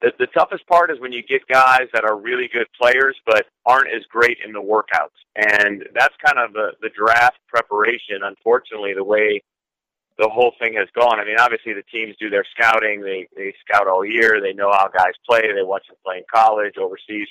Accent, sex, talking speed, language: American, male, 215 wpm, English